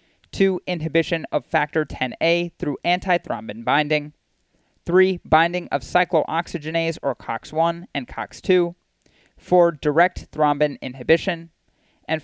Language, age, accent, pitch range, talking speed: English, 30-49, American, 135-180 Hz, 105 wpm